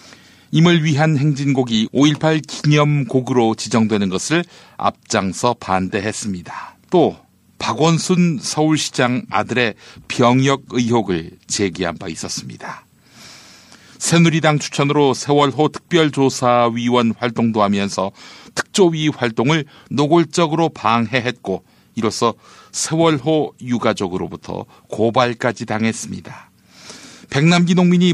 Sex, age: male, 60-79